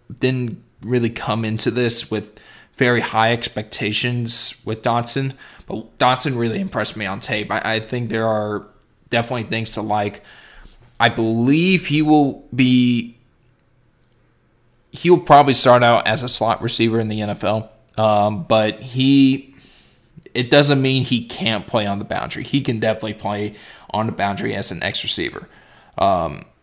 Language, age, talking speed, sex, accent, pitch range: English, 20-39, 155 wpm, male, American, 105-130 Hz